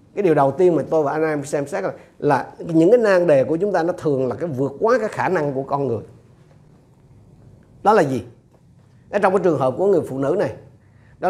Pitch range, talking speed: 125-180 Hz, 245 wpm